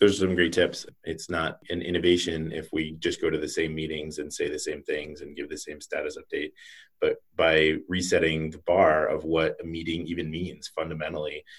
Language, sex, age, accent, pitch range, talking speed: English, male, 30-49, American, 80-100 Hz, 205 wpm